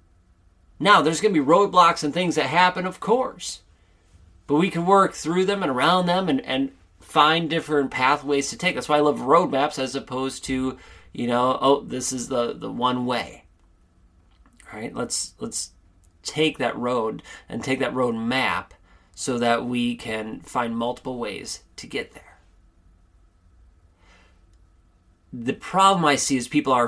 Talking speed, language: 160 wpm, English